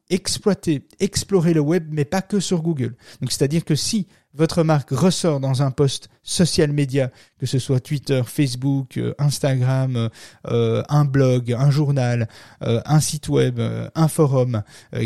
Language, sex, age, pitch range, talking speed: French, male, 30-49, 125-155 Hz, 165 wpm